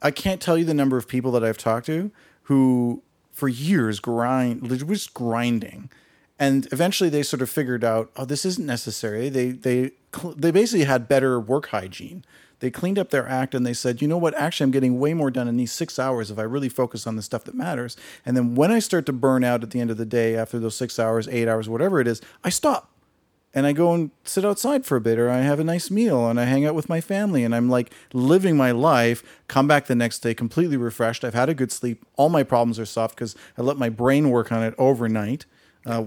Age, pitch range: 40-59, 120-150 Hz